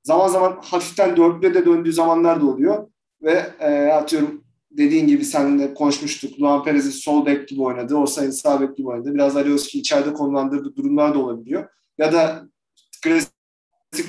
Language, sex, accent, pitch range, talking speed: Turkish, male, native, 145-205 Hz, 165 wpm